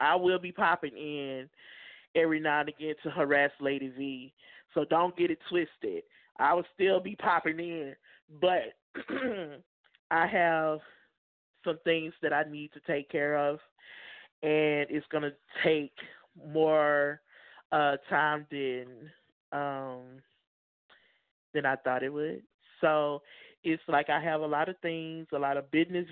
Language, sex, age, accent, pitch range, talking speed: English, male, 20-39, American, 145-170 Hz, 145 wpm